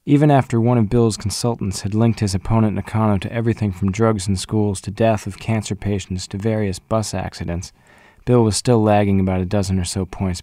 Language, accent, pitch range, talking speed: English, American, 95-115 Hz, 205 wpm